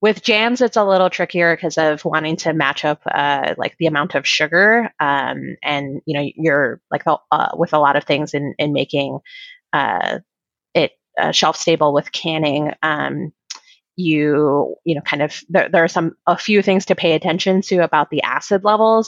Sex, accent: female, American